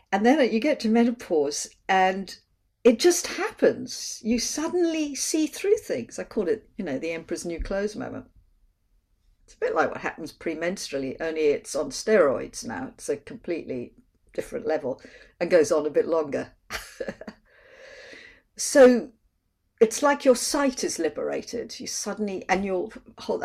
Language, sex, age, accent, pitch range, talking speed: English, female, 50-69, British, 215-325 Hz, 150 wpm